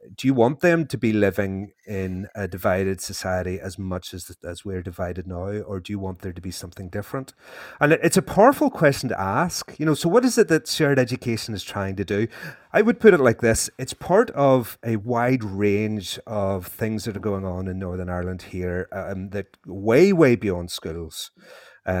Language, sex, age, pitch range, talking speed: English, male, 30-49, 95-120 Hz, 210 wpm